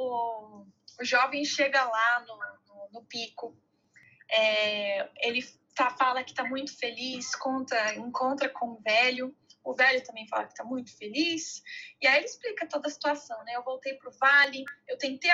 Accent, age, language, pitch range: Brazilian, 20-39, Portuguese, 245-315 Hz